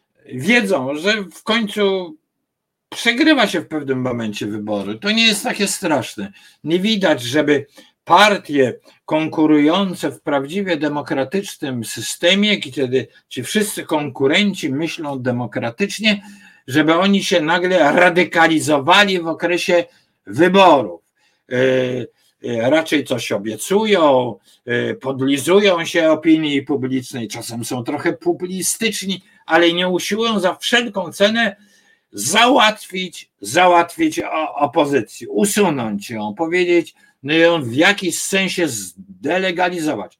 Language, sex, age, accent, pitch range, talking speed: Polish, male, 50-69, native, 140-200 Hz, 100 wpm